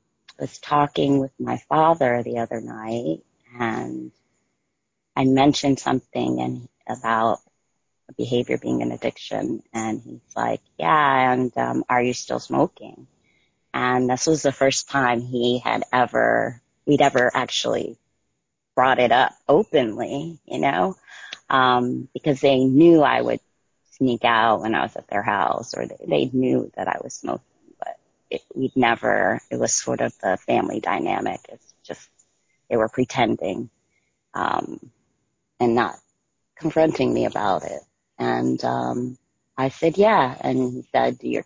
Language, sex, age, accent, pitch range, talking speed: English, female, 30-49, American, 90-135 Hz, 145 wpm